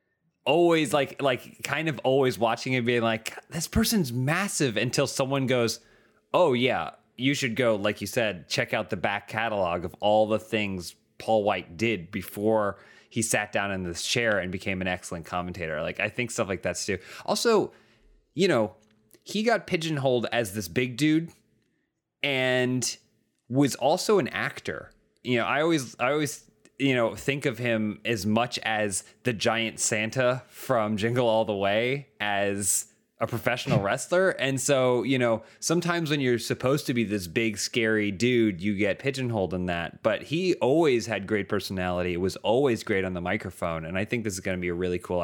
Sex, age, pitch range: male, 30-49, 100-130 Hz